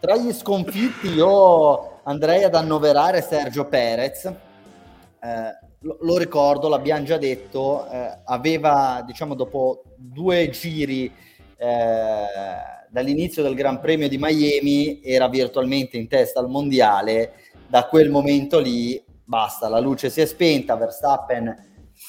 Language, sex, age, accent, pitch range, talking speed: Italian, male, 30-49, native, 120-150 Hz, 120 wpm